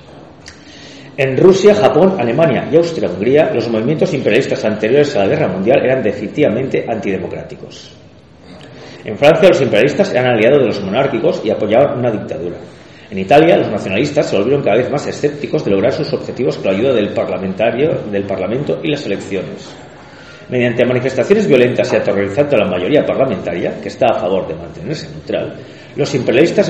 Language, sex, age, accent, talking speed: Spanish, male, 40-59, Spanish, 160 wpm